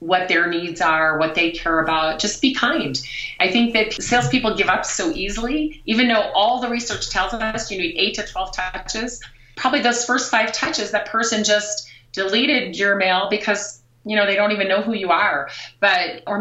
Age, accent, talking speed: 30-49, American, 200 wpm